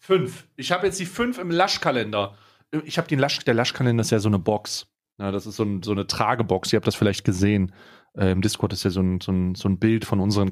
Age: 40-59